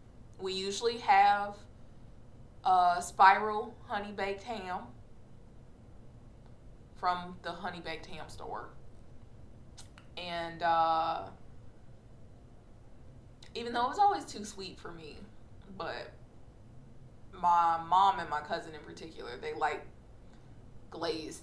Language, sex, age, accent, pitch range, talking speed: English, female, 20-39, American, 125-185 Hz, 100 wpm